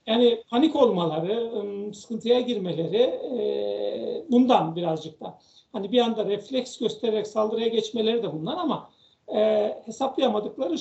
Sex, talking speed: male, 105 wpm